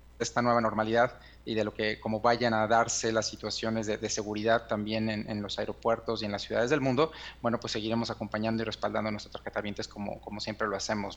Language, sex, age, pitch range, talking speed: Spanish, male, 30-49, 110-120 Hz, 220 wpm